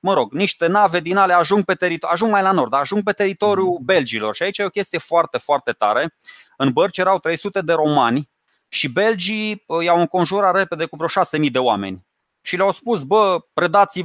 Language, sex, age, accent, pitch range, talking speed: Romanian, male, 20-39, native, 145-190 Hz, 195 wpm